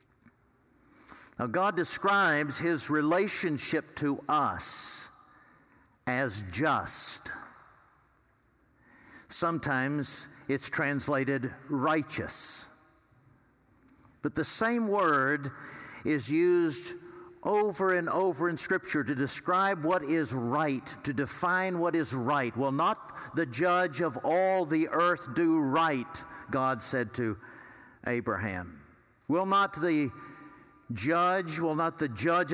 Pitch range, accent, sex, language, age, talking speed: 130-175 Hz, American, male, English, 60-79, 100 wpm